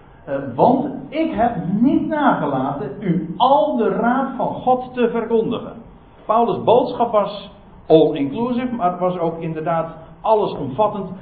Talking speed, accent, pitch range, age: 135 wpm, Dutch, 145-215 Hz, 60-79